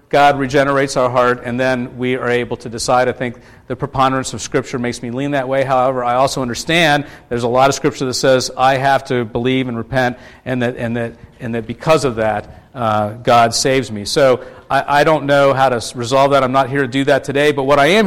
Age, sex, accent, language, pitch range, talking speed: 50-69, male, American, English, 120-140 Hz, 240 wpm